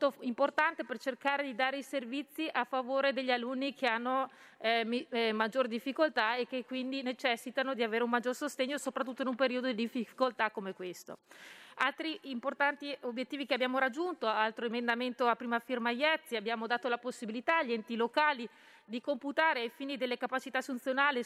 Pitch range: 240-280 Hz